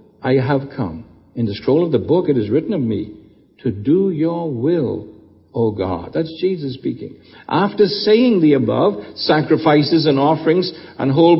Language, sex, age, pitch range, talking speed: English, male, 60-79, 125-180 Hz, 170 wpm